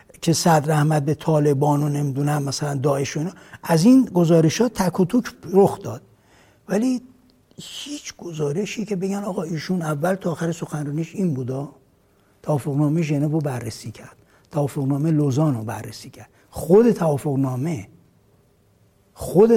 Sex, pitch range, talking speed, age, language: male, 145-190 Hz, 135 wpm, 60-79, Persian